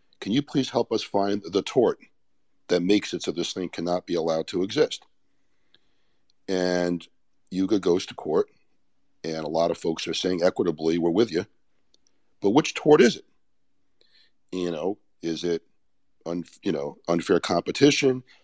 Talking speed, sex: 155 wpm, male